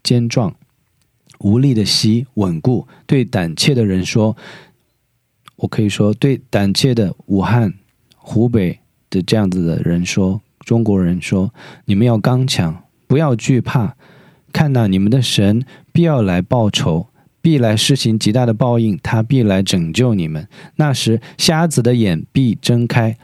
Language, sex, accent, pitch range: Korean, male, Chinese, 100-130 Hz